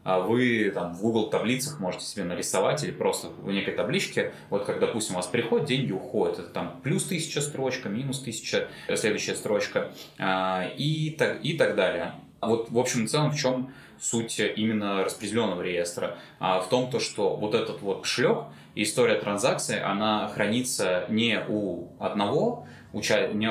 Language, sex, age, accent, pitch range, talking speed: Russian, male, 20-39, native, 100-160 Hz, 160 wpm